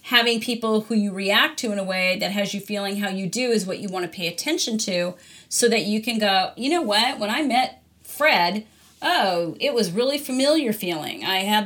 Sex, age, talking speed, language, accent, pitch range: female, 40-59, 225 wpm, English, American, 200-250 Hz